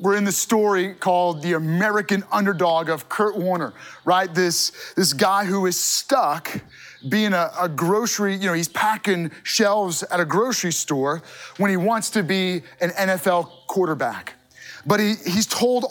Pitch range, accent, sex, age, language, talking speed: 175-225 Hz, American, male, 30-49, English, 160 wpm